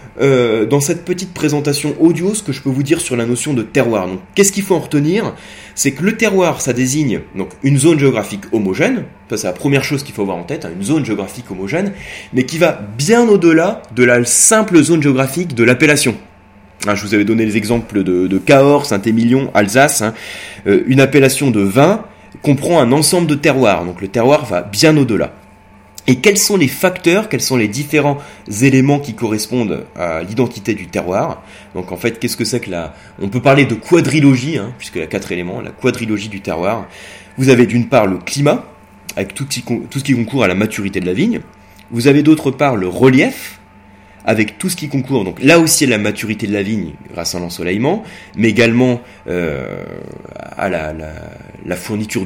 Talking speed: 200 wpm